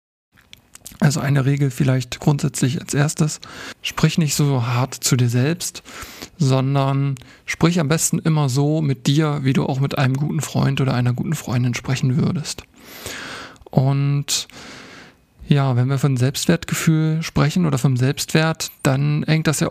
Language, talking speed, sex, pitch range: German, 150 wpm, male, 135-160 Hz